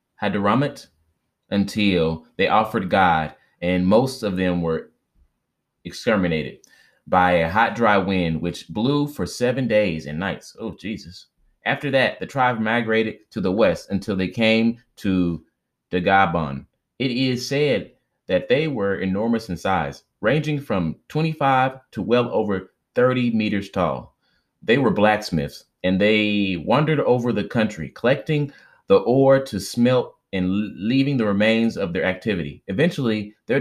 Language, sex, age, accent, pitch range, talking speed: English, male, 30-49, American, 95-125 Hz, 145 wpm